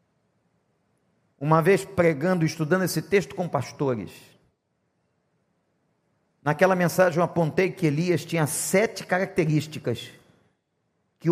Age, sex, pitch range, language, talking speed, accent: 50-69, male, 185-255 Hz, Portuguese, 95 wpm, Brazilian